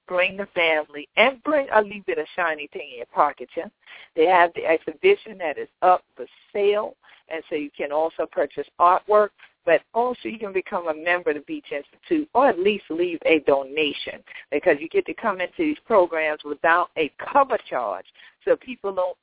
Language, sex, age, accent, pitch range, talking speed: English, female, 50-69, American, 160-240 Hz, 195 wpm